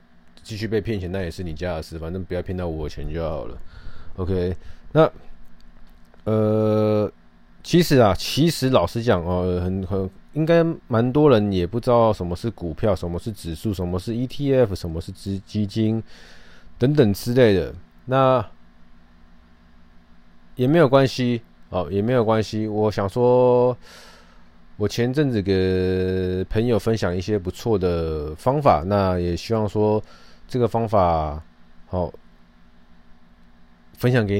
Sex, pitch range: male, 85-115 Hz